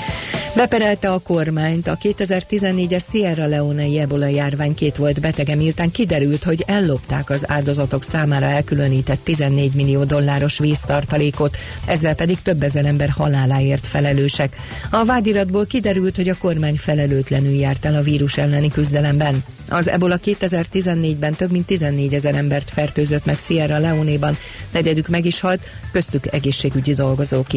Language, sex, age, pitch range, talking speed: Hungarian, female, 40-59, 140-175 Hz, 135 wpm